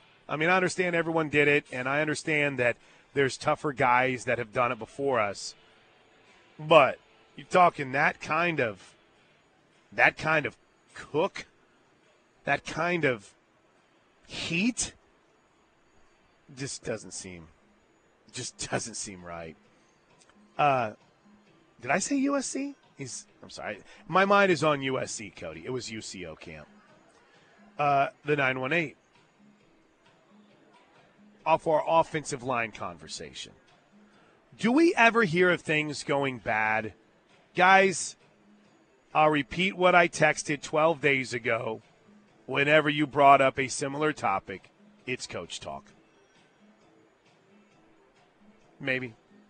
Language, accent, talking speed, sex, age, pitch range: English, American, 120 wpm, male, 30-49, 125-175 Hz